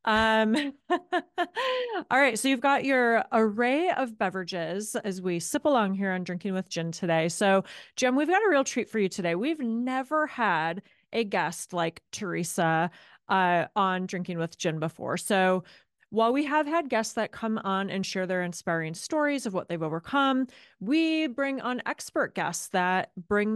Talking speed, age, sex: 175 wpm, 30-49, female